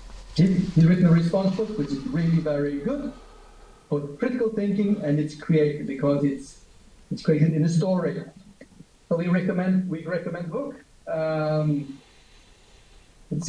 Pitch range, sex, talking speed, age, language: 150-185 Hz, male, 140 wpm, 40-59, English